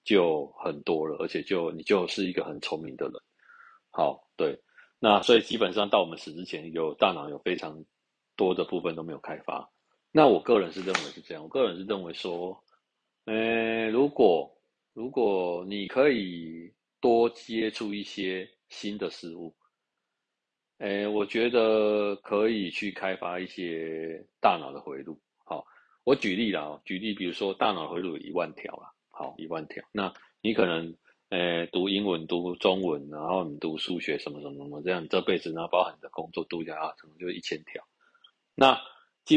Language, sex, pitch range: Chinese, male, 85-115 Hz